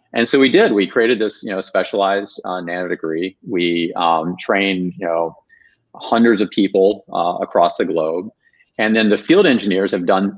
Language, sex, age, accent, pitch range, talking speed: English, male, 40-59, American, 85-110 Hz, 185 wpm